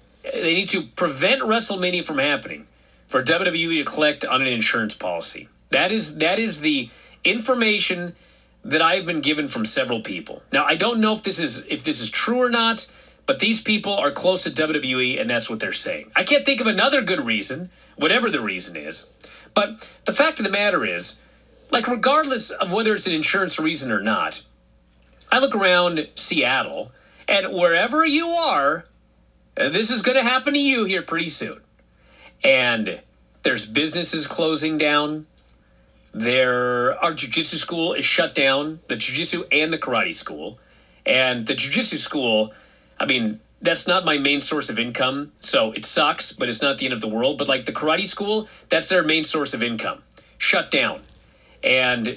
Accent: American